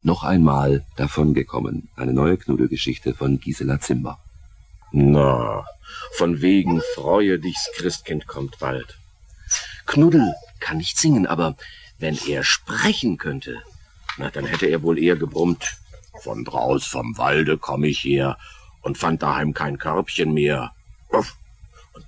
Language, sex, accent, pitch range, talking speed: German, male, German, 70-95 Hz, 130 wpm